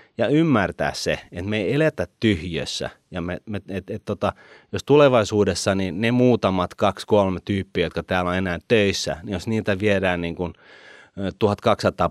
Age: 30-49